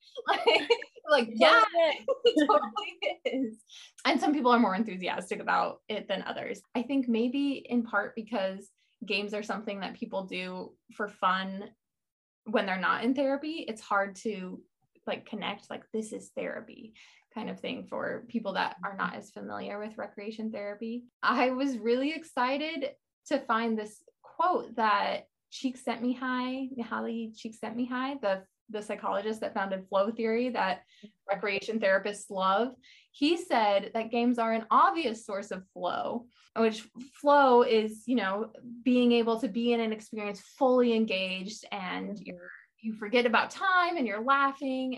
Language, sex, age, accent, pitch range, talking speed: English, female, 20-39, American, 205-255 Hz, 160 wpm